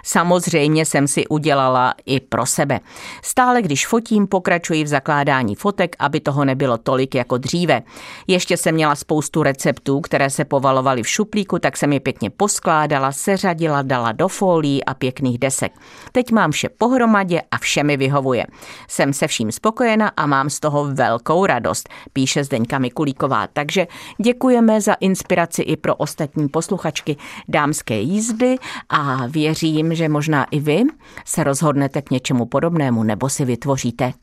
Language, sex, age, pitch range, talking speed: Czech, female, 50-69, 135-185 Hz, 155 wpm